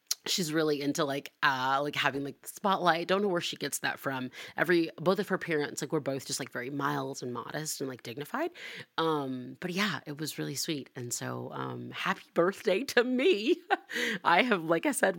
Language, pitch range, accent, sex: English, 145-205 Hz, American, female